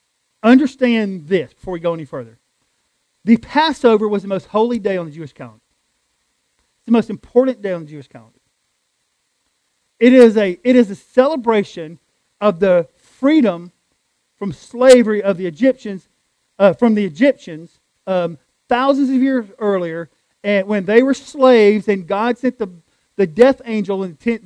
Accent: American